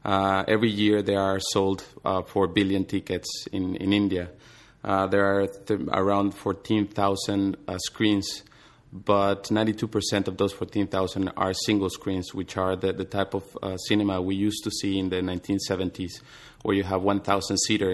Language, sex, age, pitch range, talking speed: English, male, 30-49, 95-100 Hz, 165 wpm